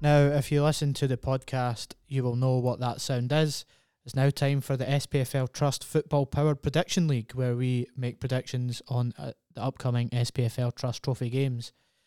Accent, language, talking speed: British, English, 185 wpm